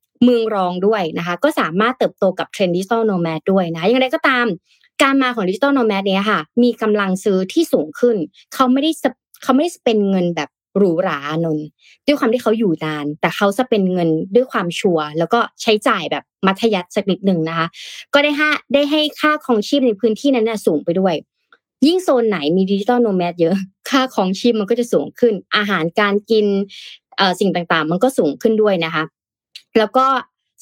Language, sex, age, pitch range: Thai, female, 20-39, 180-240 Hz